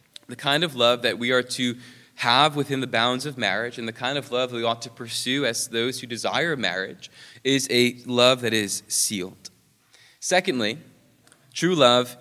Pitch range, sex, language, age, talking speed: 120-140 Hz, male, English, 20-39, 180 wpm